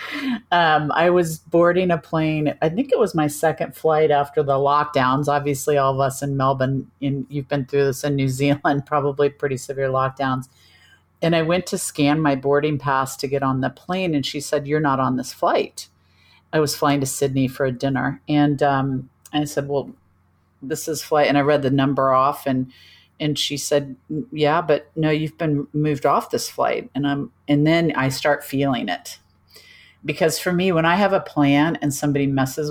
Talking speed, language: 200 wpm, English